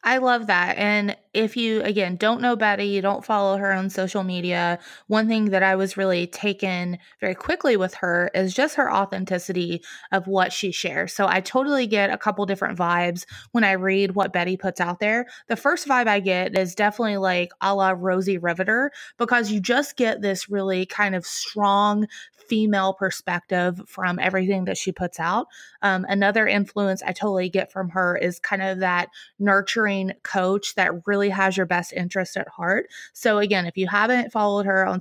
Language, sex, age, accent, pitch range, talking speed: English, female, 20-39, American, 185-215 Hz, 190 wpm